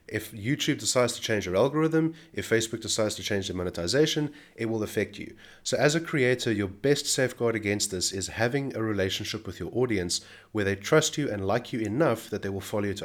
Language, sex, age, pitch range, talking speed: English, male, 30-49, 105-135 Hz, 220 wpm